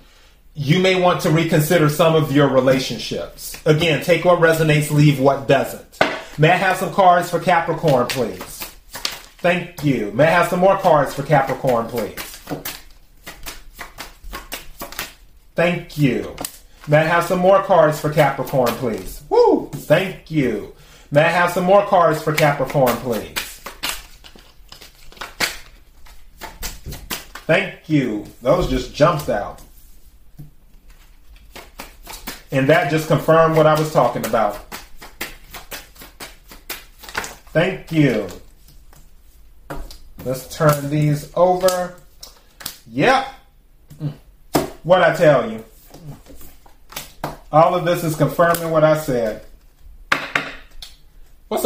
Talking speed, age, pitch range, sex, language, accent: 110 wpm, 30-49, 140-175 Hz, male, English, American